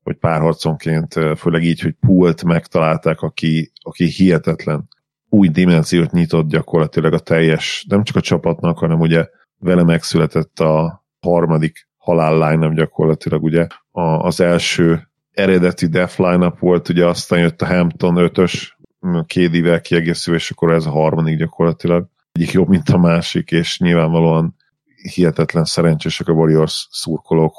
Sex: male